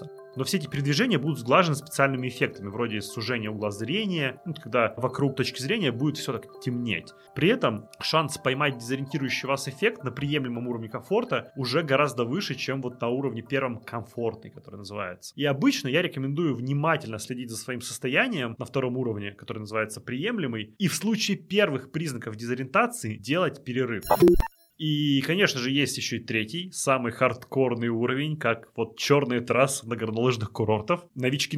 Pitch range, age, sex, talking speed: 120-150 Hz, 20-39, male, 160 wpm